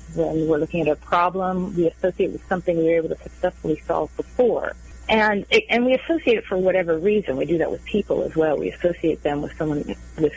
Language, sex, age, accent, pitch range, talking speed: English, female, 40-59, American, 150-185 Hz, 225 wpm